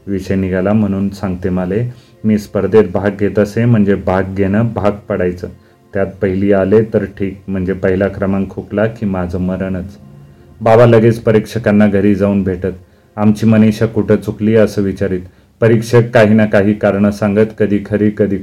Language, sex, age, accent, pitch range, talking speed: Marathi, male, 30-49, native, 95-105 Hz, 155 wpm